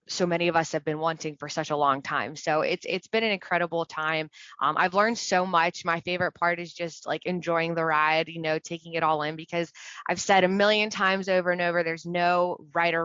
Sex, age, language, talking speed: female, 20-39, English, 240 wpm